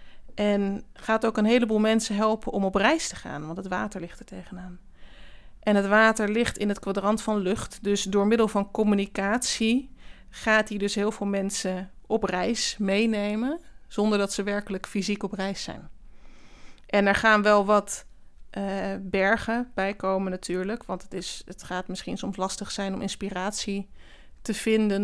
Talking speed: 170 wpm